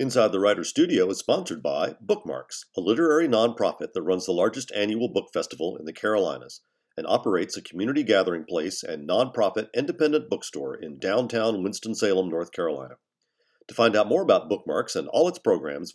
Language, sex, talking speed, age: English, male, 175 wpm, 50-69